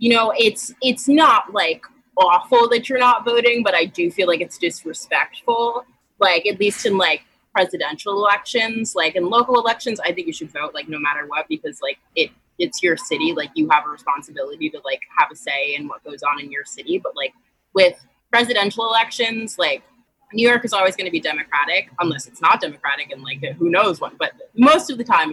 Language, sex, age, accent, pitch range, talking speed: English, female, 20-39, American, 155-235 Hz, 210 wpm